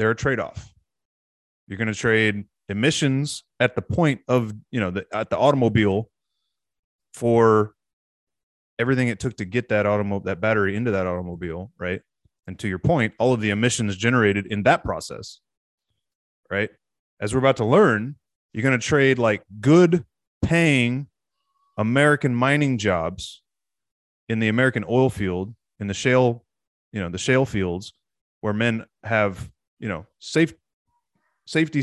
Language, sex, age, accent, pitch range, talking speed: English, male, 30-49, American, 100-130 Hz, 150 wpm